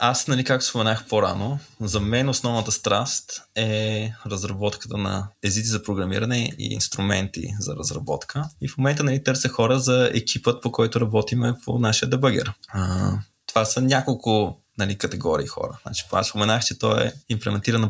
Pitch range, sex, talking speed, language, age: 100-120 Hz, male, 155 wpm, Bulgarian, 20-39